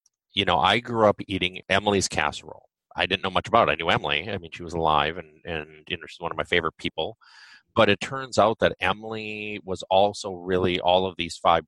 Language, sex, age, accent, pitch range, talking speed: English, male, 30-49, American, 85-100 Hz, 230 wpm